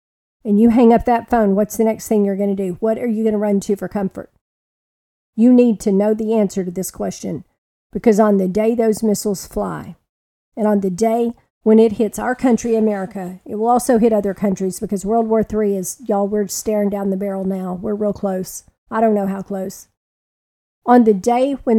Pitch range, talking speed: 200-230 Hz, 220 wpm